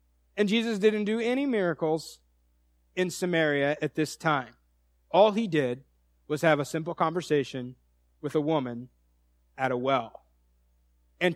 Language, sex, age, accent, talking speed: English, male, 40-59, American, 135 wpm